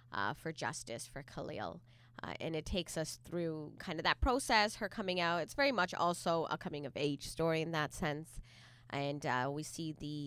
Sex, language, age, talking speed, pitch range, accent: female, English, 20-39, 195 wpm, 140-175 Hz, American